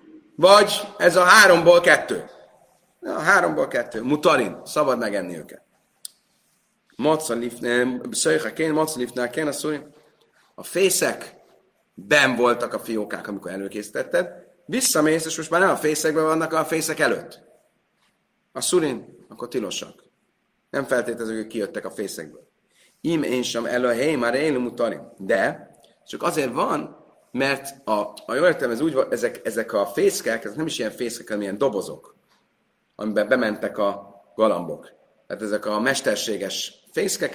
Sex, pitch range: male, 115-175 Hz